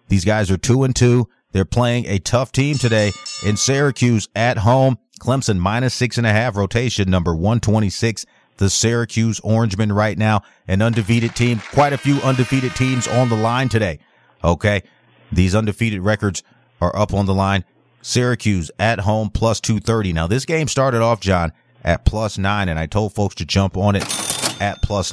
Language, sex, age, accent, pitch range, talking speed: English, male, 40-59, American, 95-120 Hz, 170 wpm